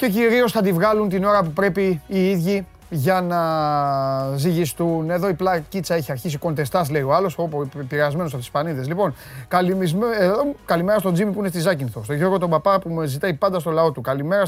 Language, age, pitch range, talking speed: Greek, 30-49, 155-215 Hz, 195 wpm